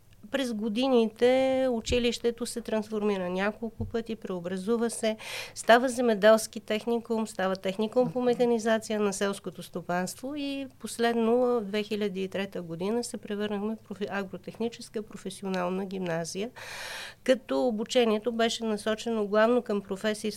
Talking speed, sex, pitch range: 110 wpm, female, 200-235 Hz